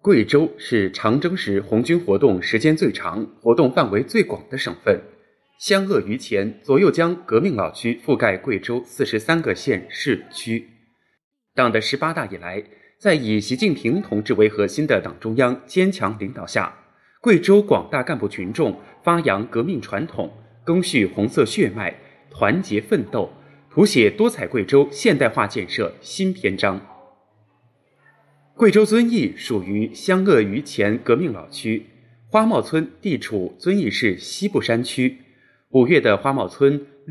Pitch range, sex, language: 110-175 Hz, male, Chinese